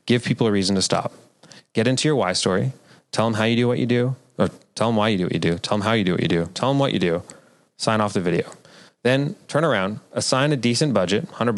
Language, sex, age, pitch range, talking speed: English, male, 30-49, 100-125 Hz, 275 wpm